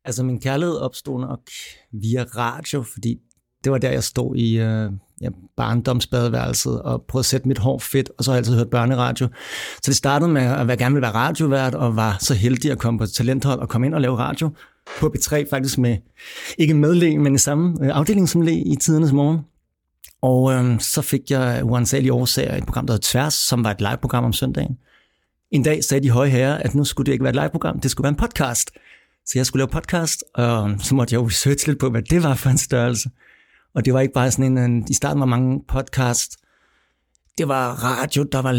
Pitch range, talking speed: 120-140 Hz, 225 wpm